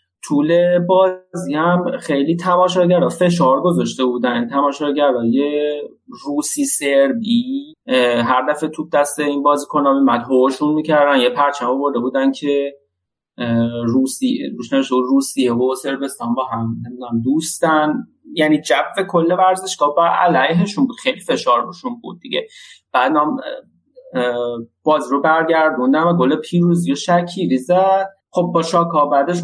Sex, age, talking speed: male, 30-49, 130 wpm